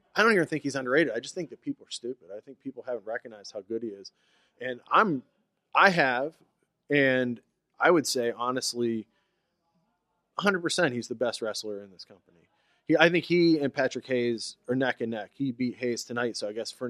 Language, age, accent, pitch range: English, 30-49, American, 115-145 Hz